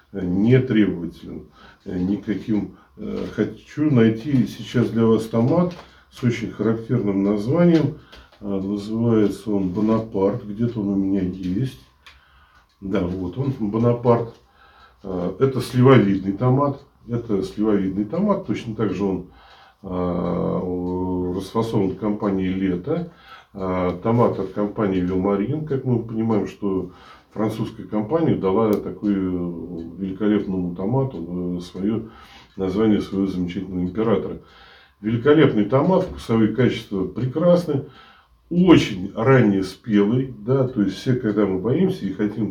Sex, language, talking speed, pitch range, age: male, Russian, 105 wpm, 95-120 Hz, 50-69